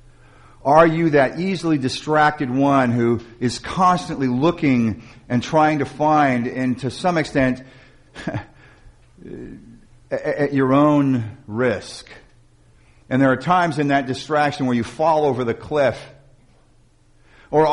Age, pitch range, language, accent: 50-69, 115-145 Hz, English, American